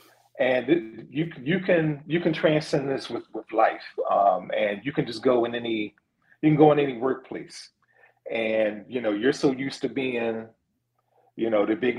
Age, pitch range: 40-59, 110-135 Hz